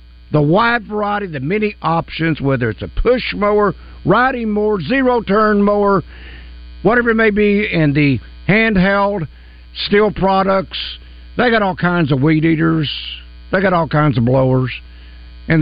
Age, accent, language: 60-79, American, English